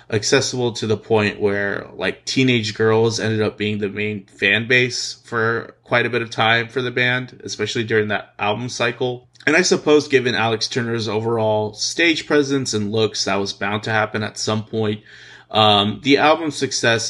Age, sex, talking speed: 20-39, male, 185 wpm